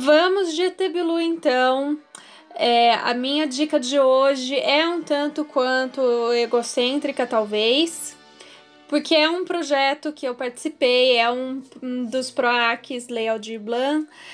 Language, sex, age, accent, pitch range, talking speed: Portuguese, female, 10-29, Brazilian, 250-310 Hz, 120 wpm